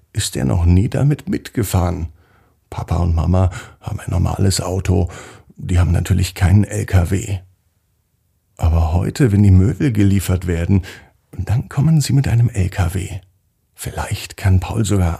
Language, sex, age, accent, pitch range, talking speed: German, male, 50-69, German, 95-110 Hz, 140 wpm